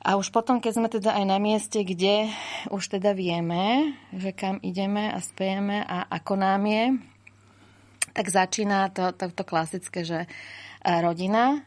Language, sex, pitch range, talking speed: Slovak, female, 165-195 Hz, 150 wpm